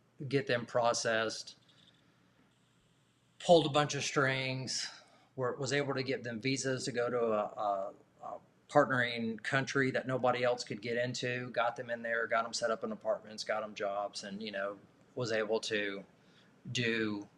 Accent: American